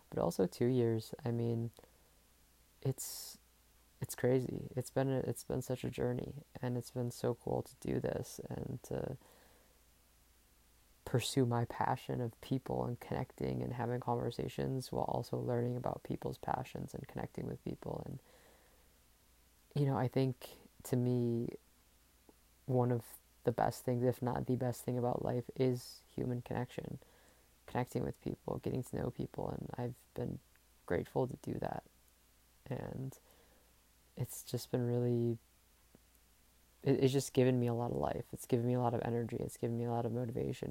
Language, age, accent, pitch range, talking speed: English, 20-39, American, 100-125 Hz, 160 wpm